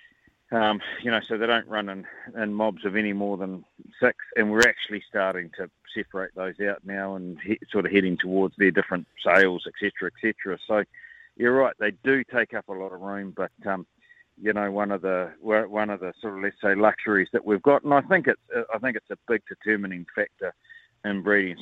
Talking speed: 220 wpm